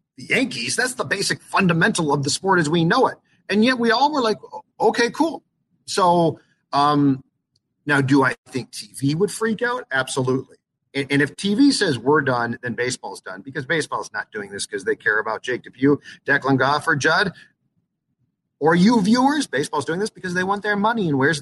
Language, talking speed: English, 200 wpm